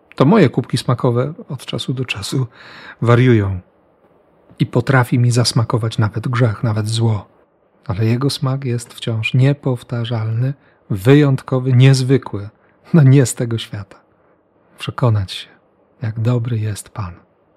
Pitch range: 115-150 Hz